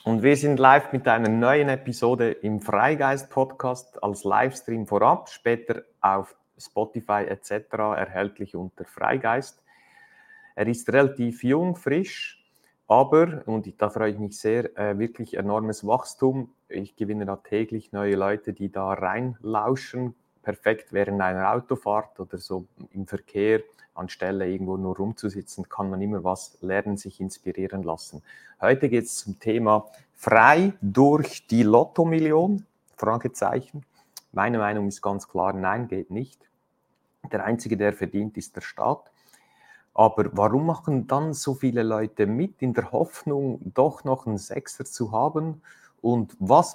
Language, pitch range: German, 100-130 Hz